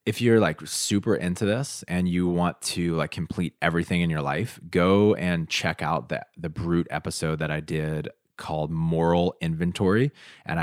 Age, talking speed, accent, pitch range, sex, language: 20-39, 175 wpm, American, 80-100 Hz, male, English